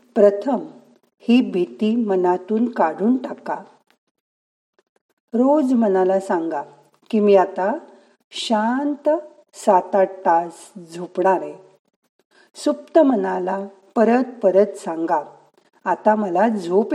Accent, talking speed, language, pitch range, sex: native, 90 wpm, Marathi, 185-240 Hz, female